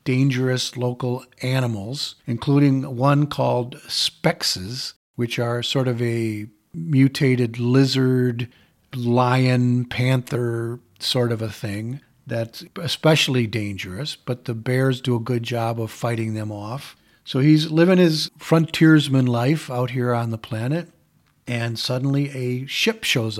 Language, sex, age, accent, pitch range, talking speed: English, male, 50-69, American, 120-140 Hz, 130 wpm